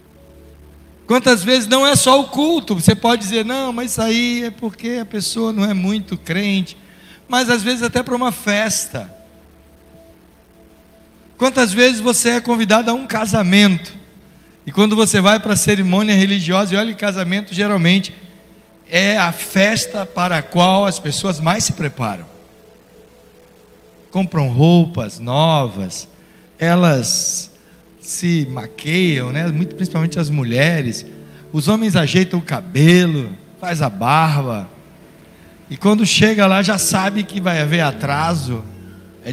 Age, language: 60-79, Portuguese